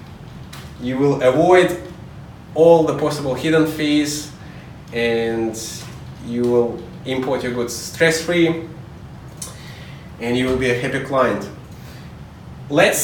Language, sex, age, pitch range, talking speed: English, male, 20-39, 120-150 Hz, 105 wpm